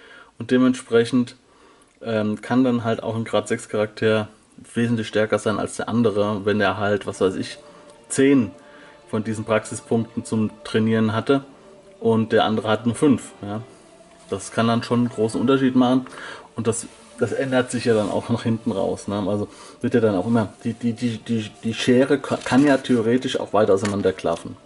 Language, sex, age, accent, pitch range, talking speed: German, male, 30-49, German, 110-140 Hz, 180 wpm